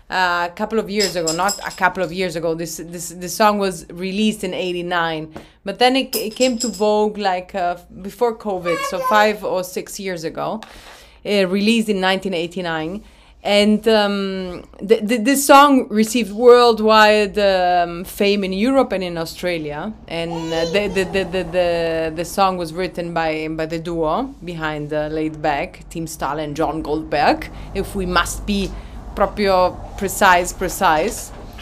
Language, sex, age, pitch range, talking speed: English, female, 30-49, 170-215 Hz, 165 wpm